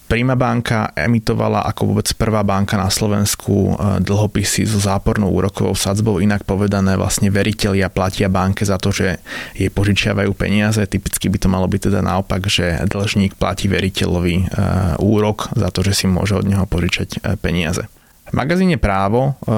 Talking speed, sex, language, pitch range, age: 155 wpm, male, Slovak, 95-105 Hz, 20-39